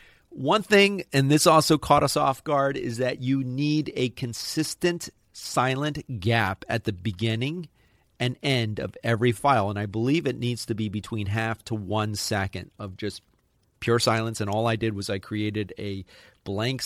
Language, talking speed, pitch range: English, 180 wpm, 105-125 Hz